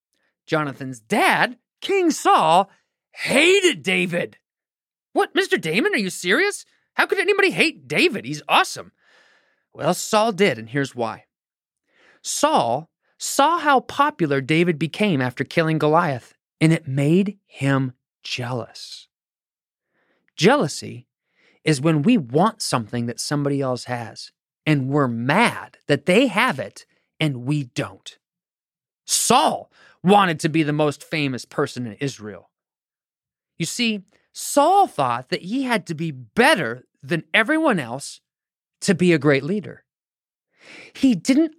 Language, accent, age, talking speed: English, American, 30-49, 130 wpm